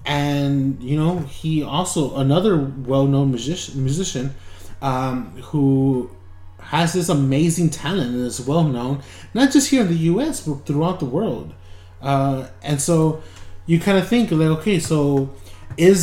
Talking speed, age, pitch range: 145 wpm, 20-39, 110-160 Hz